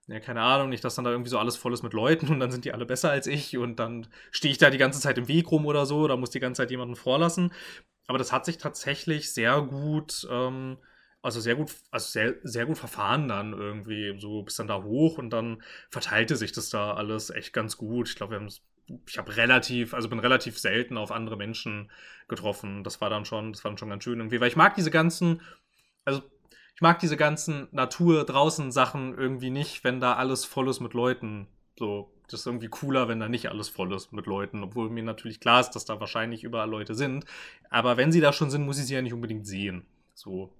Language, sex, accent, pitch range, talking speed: German, male, German, 115-145 Hz, 230 wpm